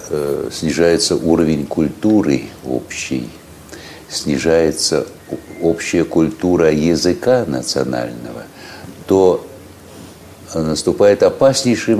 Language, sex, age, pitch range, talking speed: Russian, male, 60-79, 80-105 Hz, 60 wpm